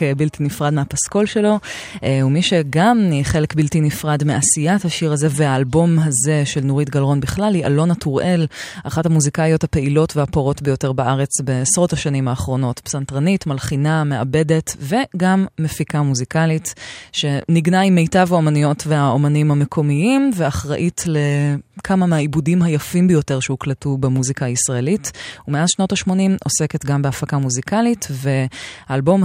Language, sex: Hebrew, female